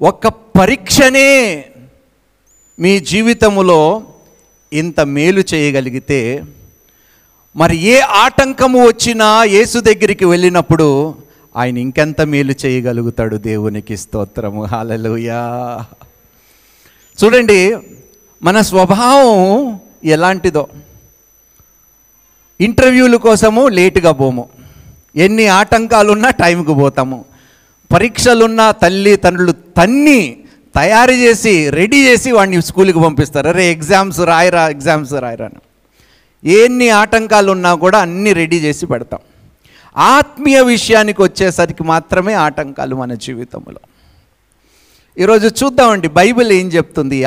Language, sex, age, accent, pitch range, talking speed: Telugu, male, 50-69, native, 150-220 Hz, 90 wpm